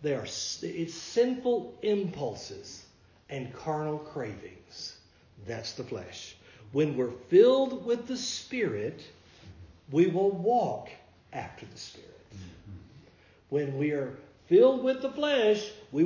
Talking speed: 115 wpm